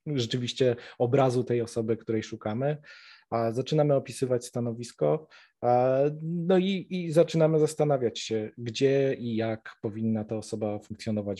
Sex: male